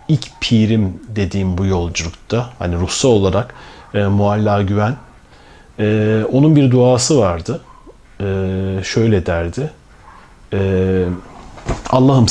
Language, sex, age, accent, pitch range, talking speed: Turkish, male, 40-59, native, 95-125 Hz, 100 wpm